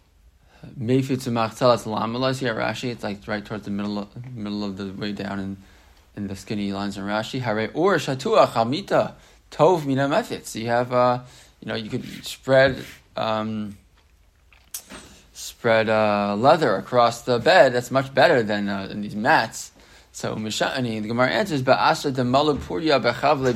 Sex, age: male, 20-39